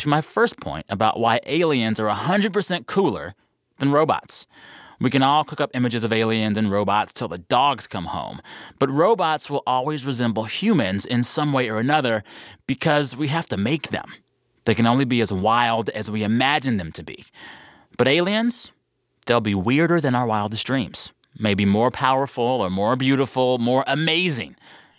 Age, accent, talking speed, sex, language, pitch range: 30-49, American, 175 wpm, male, English, 110-150 Hz